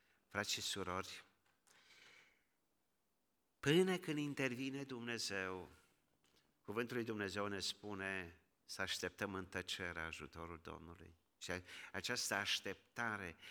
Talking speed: 90 wpm